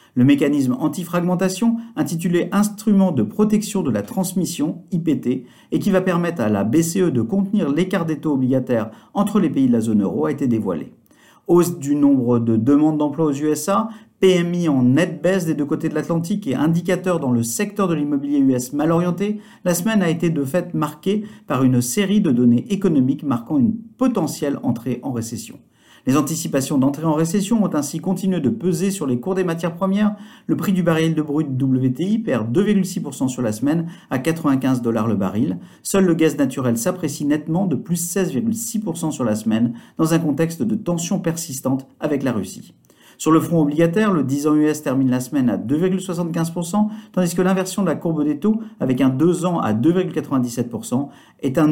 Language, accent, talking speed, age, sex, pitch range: French, French, 195 wpm, 50-69, male, 140-190 Hz